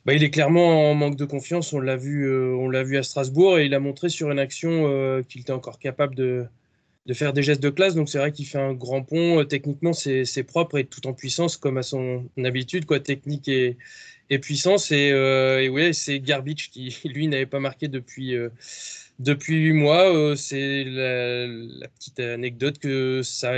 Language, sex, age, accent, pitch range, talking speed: French, male, 20-39, French, 130-150 Hz, 215 wpm